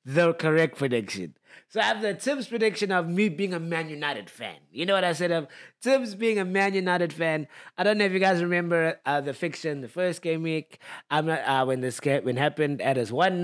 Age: 20-39